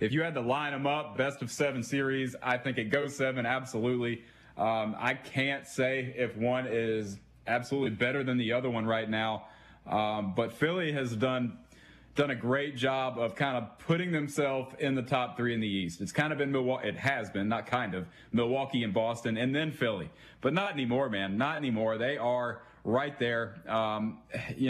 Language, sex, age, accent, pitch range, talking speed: English, male, 30-49, American, 115-135 Hz, 200 wpm